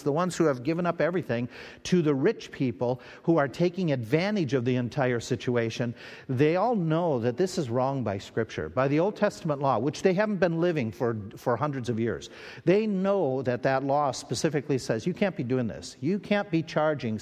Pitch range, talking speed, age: 125-170 Hz, 205 wpm, 50-69